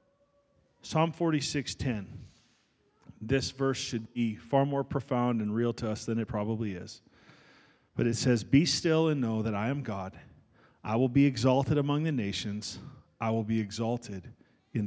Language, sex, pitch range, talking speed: English, male, 115-145 Hz, 160 wpm